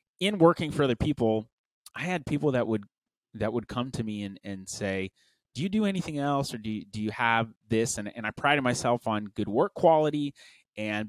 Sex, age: male, 30-49